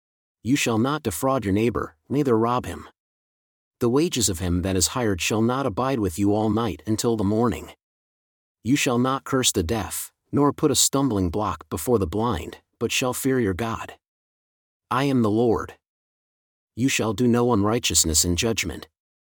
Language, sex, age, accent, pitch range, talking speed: English, male, 40-59, American, 95-125 Hz, 175 wpm